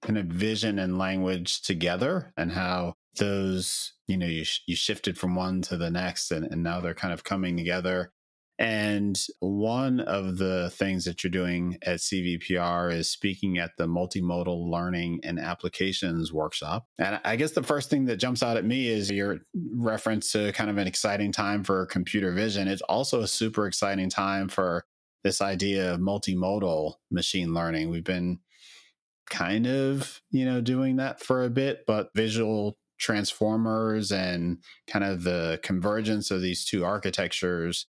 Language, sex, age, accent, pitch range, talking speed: English, male, 30-49, American, 90-105 Hz, 170 wpm